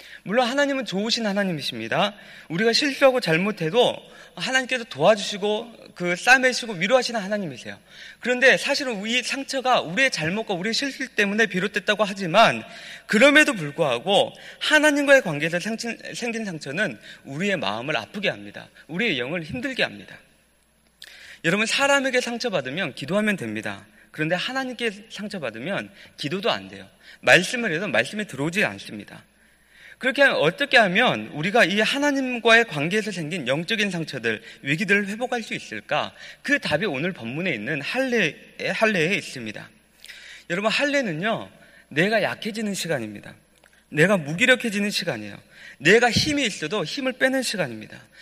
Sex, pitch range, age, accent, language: male, 180-255 Hz, 30-49, native, Korean